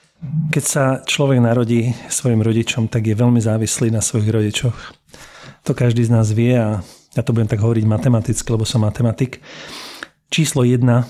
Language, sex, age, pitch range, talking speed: Slovak, male, 40-59, 115-135 Hz, 160 wpm